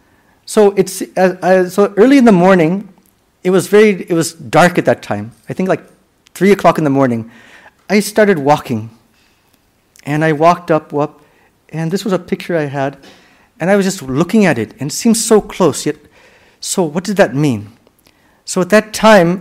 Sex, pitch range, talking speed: male, 140-195 Hz, 195 wpm